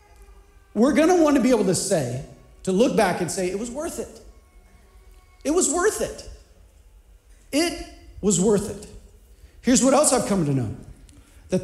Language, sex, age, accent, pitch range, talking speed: English, male, 40-59, American, 160-265 Hz, 175 wpm